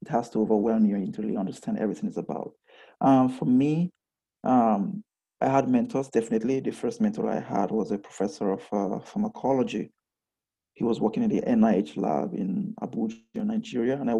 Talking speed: 180 wpm